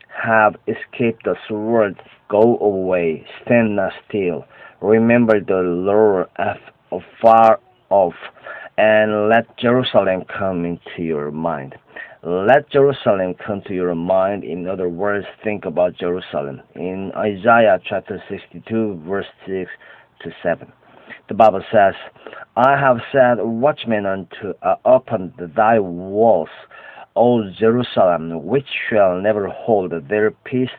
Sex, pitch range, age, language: male, 90-115 Hz, 50-69, Korean